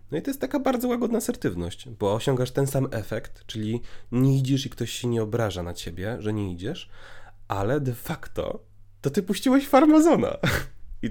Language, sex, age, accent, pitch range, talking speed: Polish, male, 30-49, native, 100-125 Hz, 185 wpm